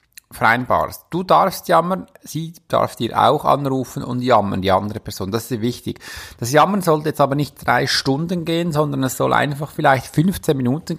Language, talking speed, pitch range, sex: German, 185 wpm, 110-150 Hz, male